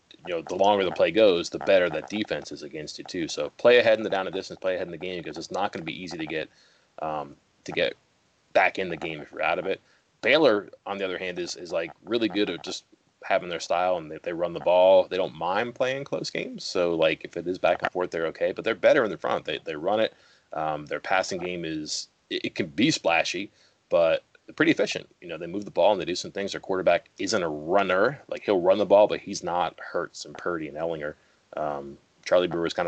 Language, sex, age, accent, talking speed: English, male, 30-49, American, 260 wpm